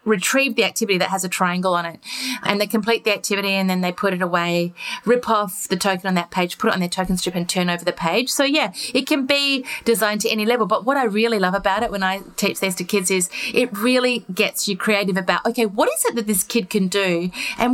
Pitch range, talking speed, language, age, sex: 195-275 Hz, 260 wpm, English, 30-49, female